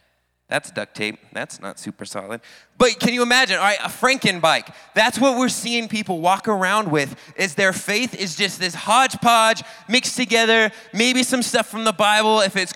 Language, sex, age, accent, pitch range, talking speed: English, male, 20-39, American, 170-215 Hz, 195 wpm